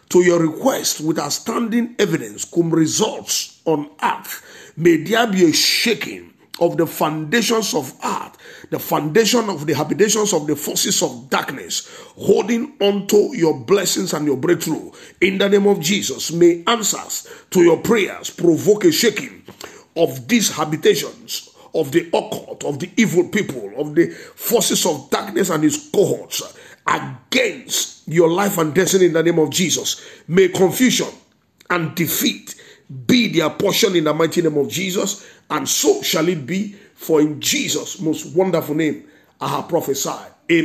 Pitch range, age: 150-200 Hz, 50-69